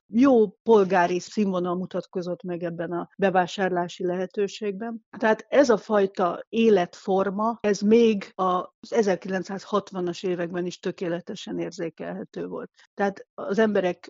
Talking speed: 110 wpm